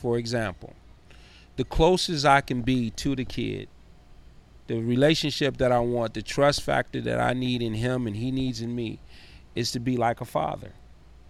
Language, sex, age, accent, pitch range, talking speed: English, male, 30-49, American, 110-135 Hz, 180 wpm